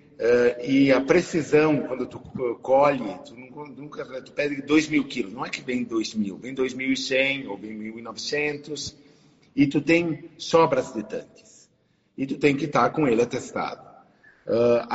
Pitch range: 120-145 Hz